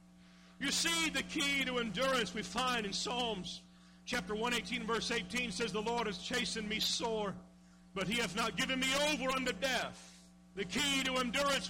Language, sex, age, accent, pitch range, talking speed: English, male, 50-69, American, 180-255 Hz, 180 wpm